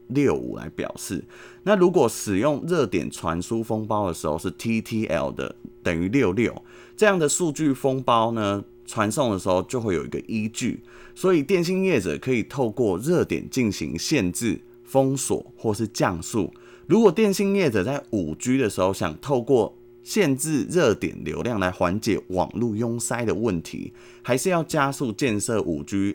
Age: 20-39